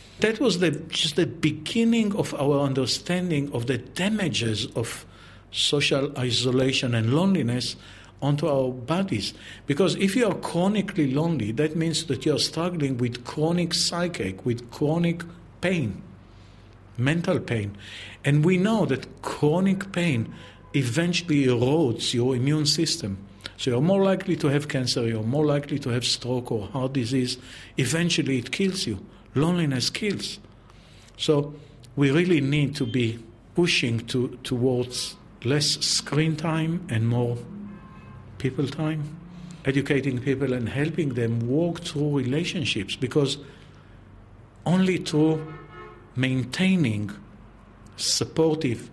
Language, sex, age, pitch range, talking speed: English, male, 50-69, 115-160 Hz, 125 wpm